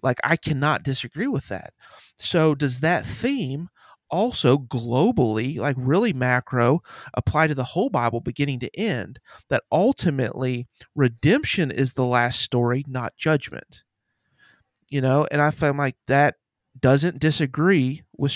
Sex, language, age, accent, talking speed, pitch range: male, English, 40-59, American, 135 wpm, 130-160 Hz